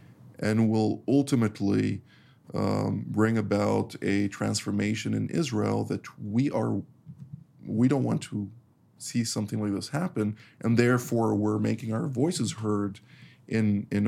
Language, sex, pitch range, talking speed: English, male, 105-130 Hz, 130 wpm